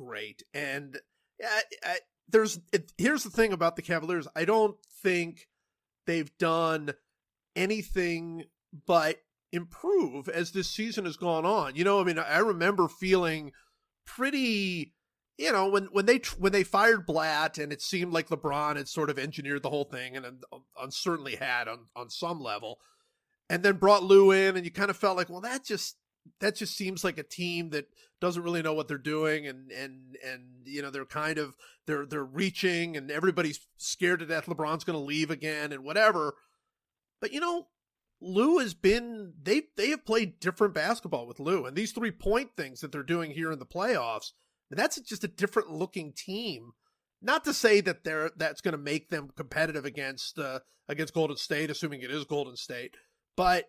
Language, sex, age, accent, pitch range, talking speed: English, male, 30-49, American, 150-200 Hz, 185 wpm